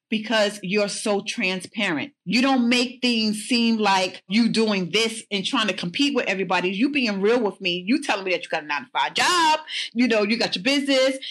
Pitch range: 195-250 Hz